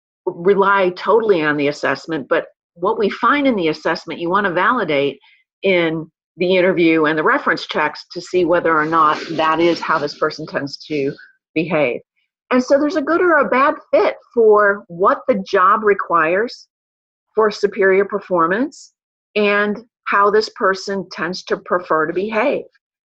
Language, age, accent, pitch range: English, 50-69, American, 170-225 Hz